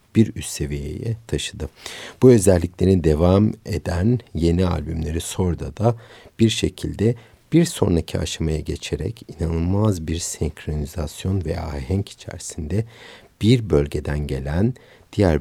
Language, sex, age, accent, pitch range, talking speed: Turkish, male, 60-79, native, 75-100 Hz, 110 wpm